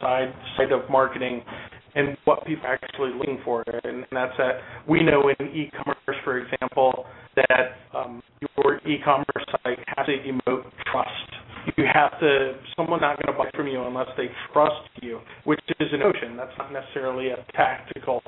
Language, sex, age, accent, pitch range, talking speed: English, male, 30-49, American, 125-140 Hz, 175 wpm